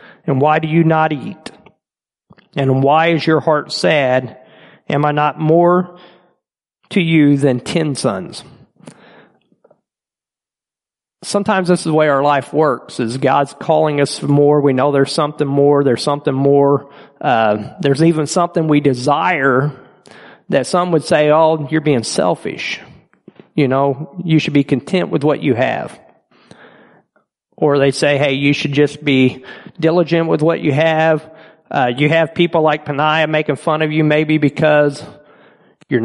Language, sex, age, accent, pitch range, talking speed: English, male, 40-59, American, 140-160 Hz, 155 wpm